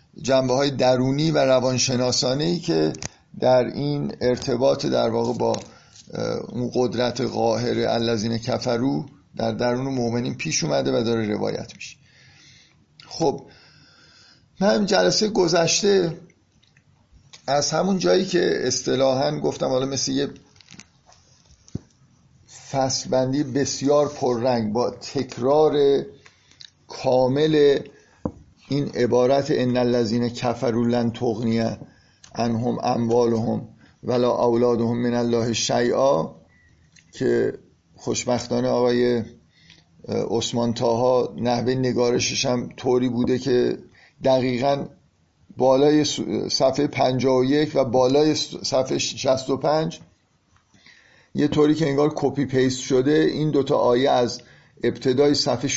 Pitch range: 120-145 Hz